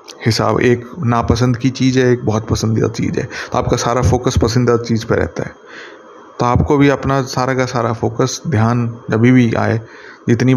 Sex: male